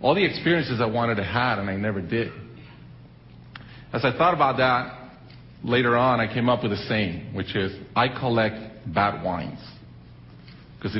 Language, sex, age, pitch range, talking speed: Portuguese, male, 50-69, 100-130 Hz, 170 wpm